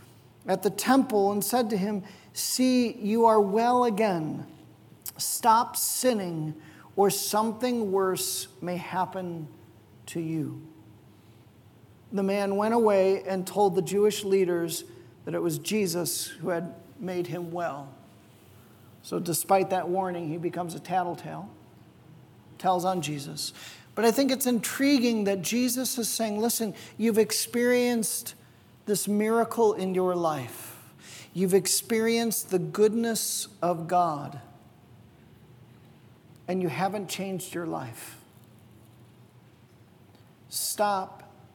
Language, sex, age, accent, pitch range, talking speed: English, male, 40-59, American, 120-205 Hz, 115 wpm